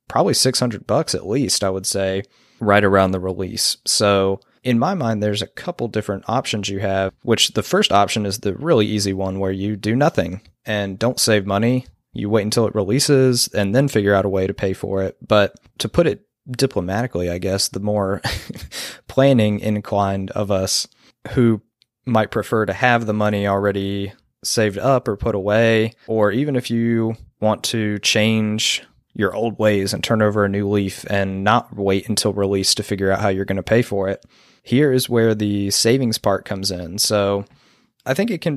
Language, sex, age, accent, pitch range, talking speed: English, male, 20-39, American, 100-115 Hz, 195 wpm